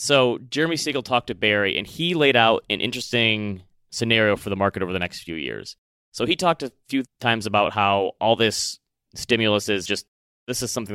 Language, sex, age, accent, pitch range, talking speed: English, male, 30-49, American, 100-125 Hz, 205 wpm